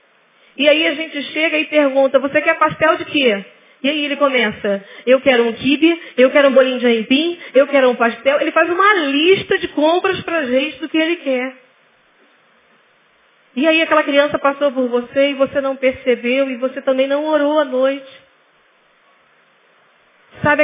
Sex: female